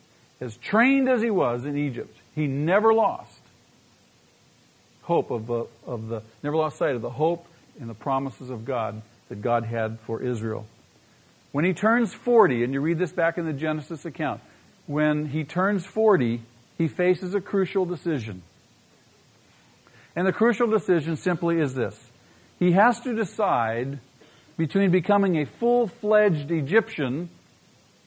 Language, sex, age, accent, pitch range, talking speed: English, male, 50-69, American, 120-180 Hz, 150 wpm